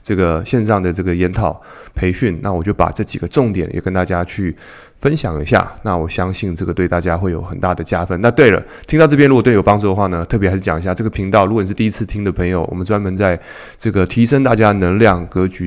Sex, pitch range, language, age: male, 90-115 Hz, Chinese, 20-39